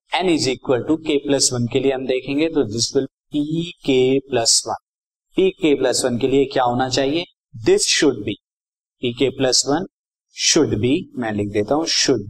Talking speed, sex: 200 wpm, male